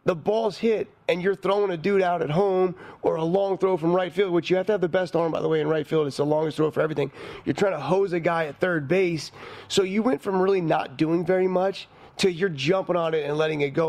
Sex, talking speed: male, 280 wpm